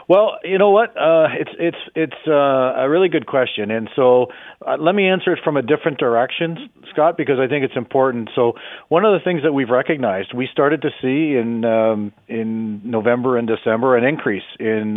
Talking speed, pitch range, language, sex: 205 wpm, 110-130 Hz, English, male